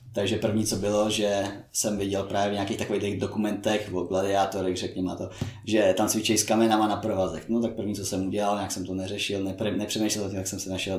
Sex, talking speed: male, 220 wpm